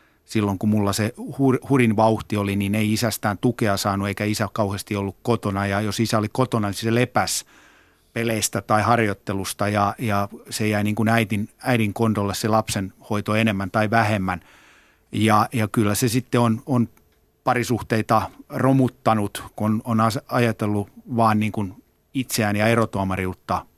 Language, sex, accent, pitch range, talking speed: Finnish, male, native, 105-120 Hz, 150 wpm